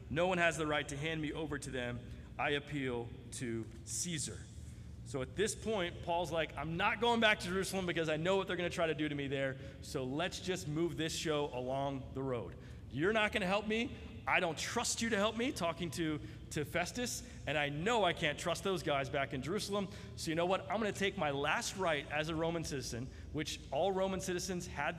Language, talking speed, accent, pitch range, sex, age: English, 235 wpm, American, 130-175 Hz, male, 40-59